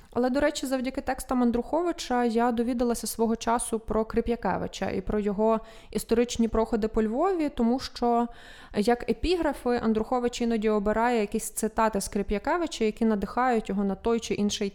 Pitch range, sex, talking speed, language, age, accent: 205-240 Hz, female, 150 wpm, Ukrainian, 20-39, native